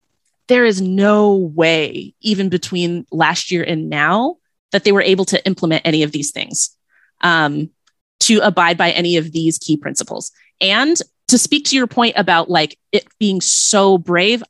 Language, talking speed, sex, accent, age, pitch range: English, 170 wpm, female, American, 20-39, 170-215 Hz